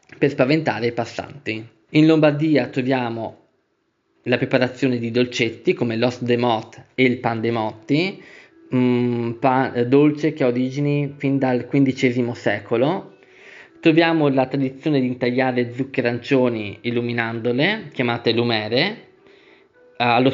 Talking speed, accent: 115 wpm, native